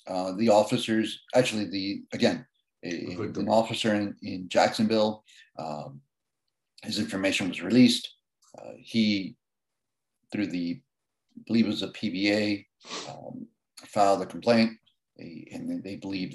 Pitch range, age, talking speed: 100-125 Hz, 50-69, 130 wpm